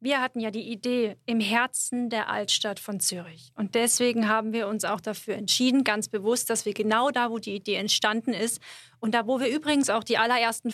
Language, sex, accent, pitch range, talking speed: German, female, German, 205-240 Hz, 210 wpm